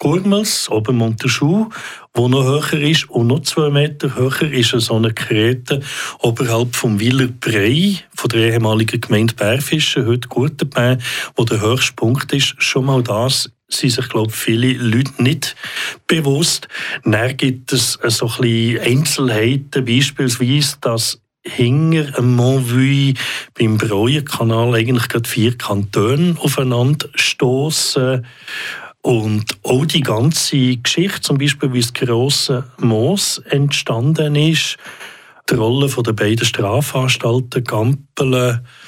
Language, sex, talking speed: German, male, 120 wpm